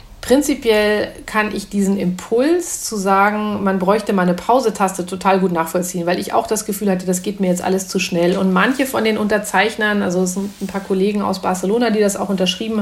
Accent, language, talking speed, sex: German, German, 205 wpm, female